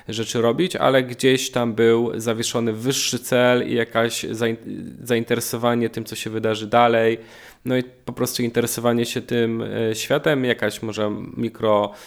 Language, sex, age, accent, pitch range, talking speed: Polish, male, 20-39, native, 105-115 Hz, 140 wpm